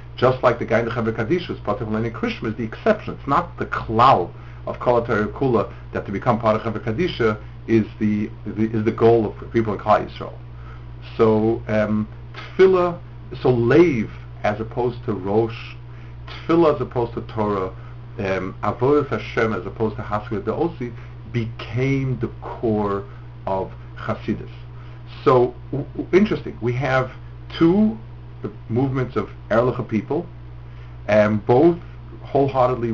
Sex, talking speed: male, 145 wpm